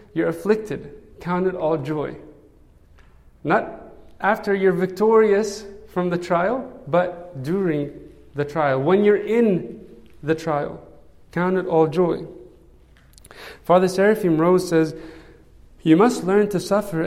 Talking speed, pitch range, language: 125 wpm, 150-190 Hz, English